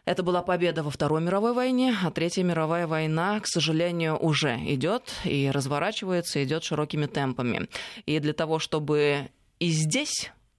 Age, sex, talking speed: 20-39, female, 145 wpm